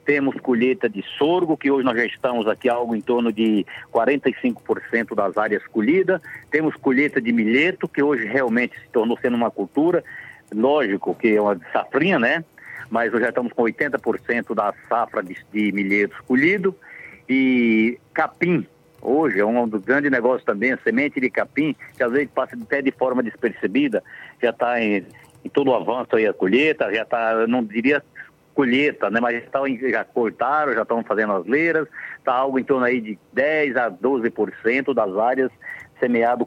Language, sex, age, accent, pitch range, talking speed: Portuguese, male, 60-79, Brazilian, 115-145 Hz, 175 wpm